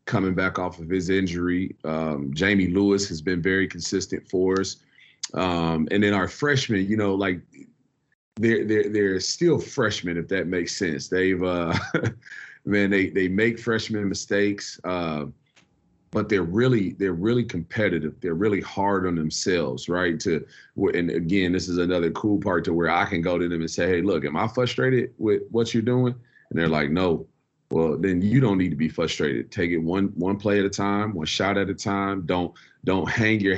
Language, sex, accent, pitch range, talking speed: English, male, American, 90-105 Hz, 195 wpm